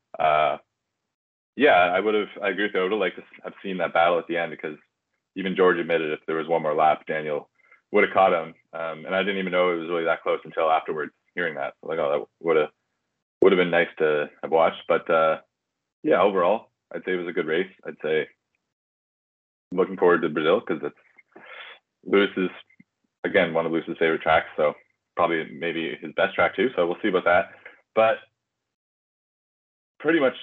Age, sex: 20-39, male